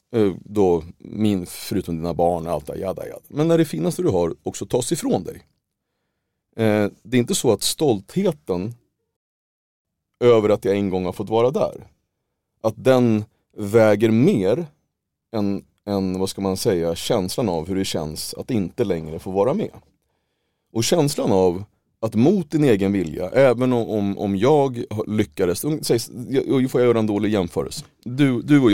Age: 30-49